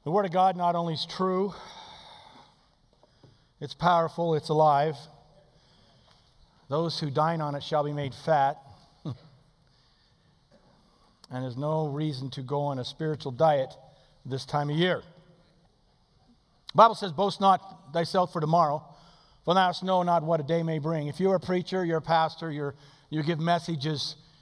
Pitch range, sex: 150-195 Hz, male